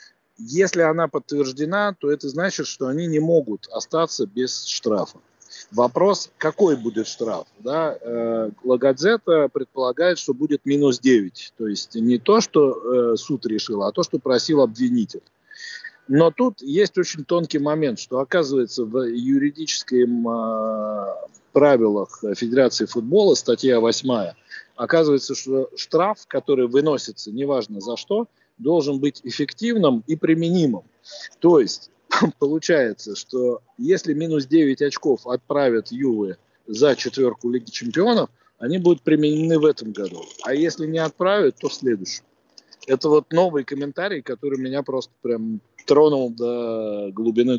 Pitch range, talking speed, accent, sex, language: 125-175 Hz, 125 wpm, native, male, Russian